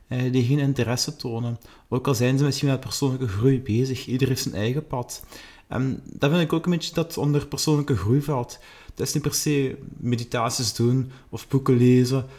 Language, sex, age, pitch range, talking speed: Dutch, male, 30-49, 130-150 Hz, 195 wpm